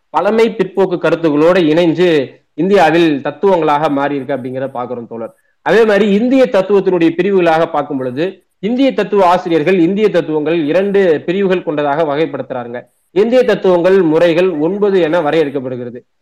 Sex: male